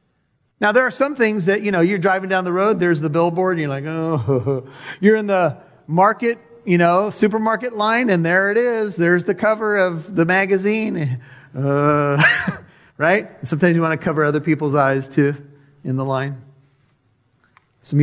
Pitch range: 135-180 Hz